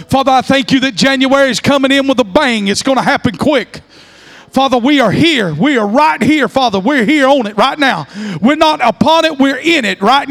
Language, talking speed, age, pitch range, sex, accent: English, 235 wpm, 40-59, 255-340 Hz, male, American